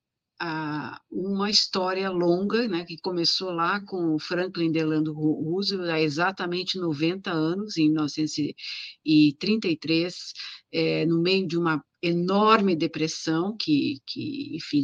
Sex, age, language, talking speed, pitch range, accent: female, 50-69, Portuguese, 115 wpm, 155-205 Hz, Brazilian